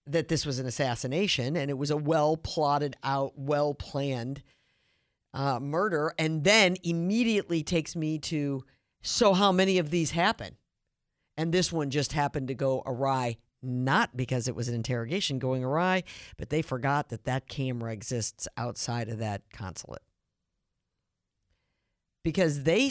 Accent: American